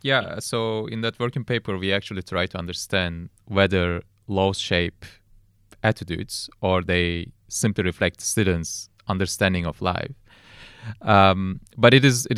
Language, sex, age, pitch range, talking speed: English, male, 30-49, 95-110 Hz, 130 wpm